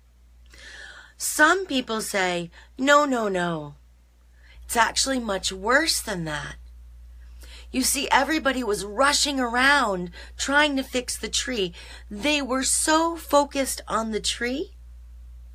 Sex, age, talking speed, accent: female, 30-49, 115 wpm, American